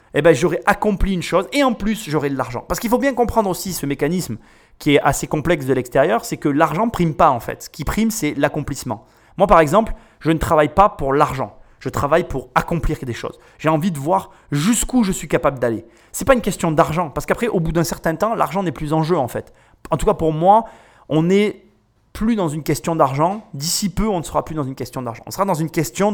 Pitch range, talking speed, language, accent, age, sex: 140-195 Hz, 250 wpm, French, French, 30-49, male